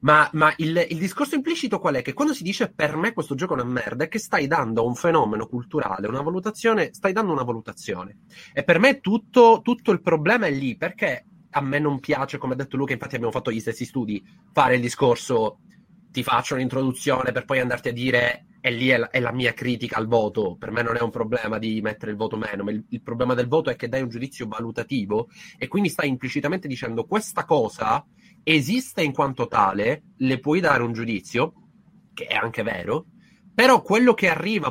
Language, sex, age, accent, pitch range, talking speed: Italian, male, 30-49, native, 120-175 Hz, 215 wpm